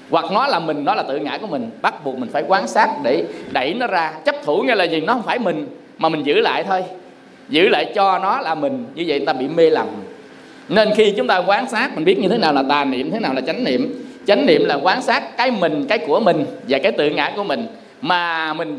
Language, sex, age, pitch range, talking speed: Vietnamese, male, 20-39, 170-235 Hz, 270 wpm